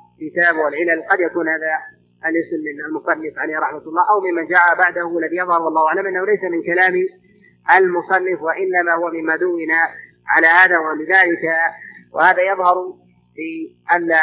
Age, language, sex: 30-49, Arabic, male